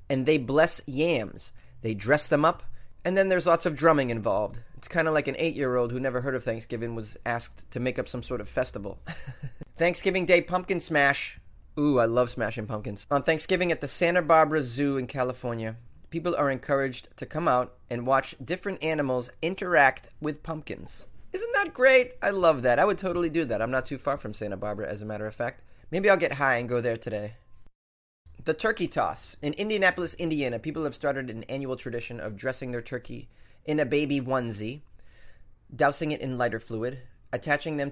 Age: 30-49